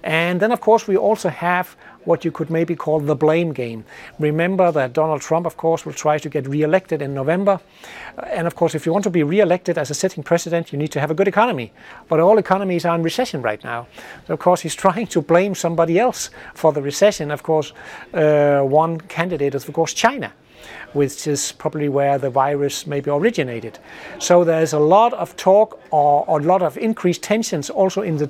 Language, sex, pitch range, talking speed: Danish, male, 150-180 Hz, 210 wpm